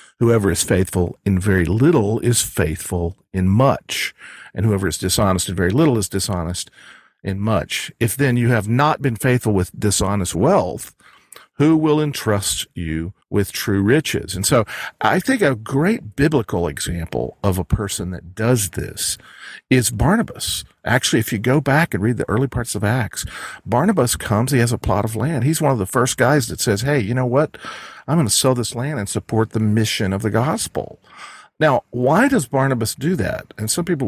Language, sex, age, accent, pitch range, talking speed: English, male, 50-69, American, 100-140 Hz, 190 wpm